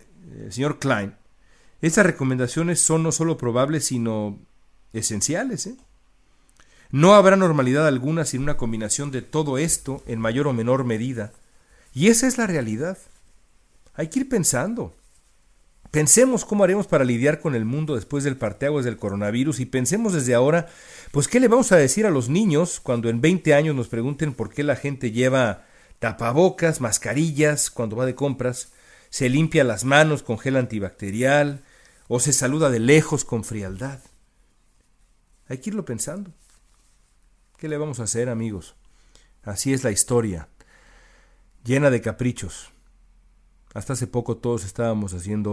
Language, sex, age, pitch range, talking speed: Spanish, male, 50-69, 110-160 Hz, 150 wpm